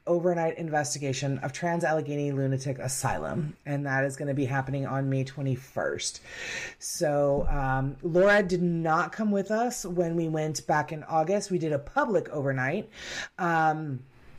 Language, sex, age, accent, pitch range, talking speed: English, female, 30-49, American, 150-185 Hz, 155 wpm